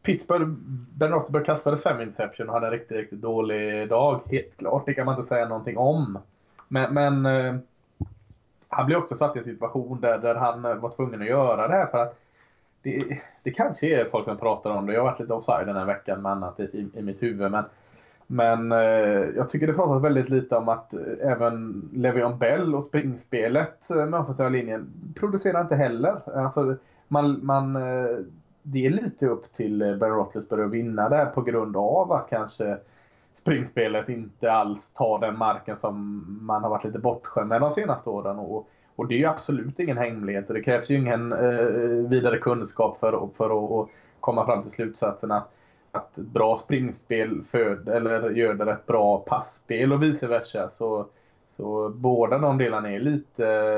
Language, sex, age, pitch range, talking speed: Swedish, male, 20-39, 110-135 Hz, 180 wpm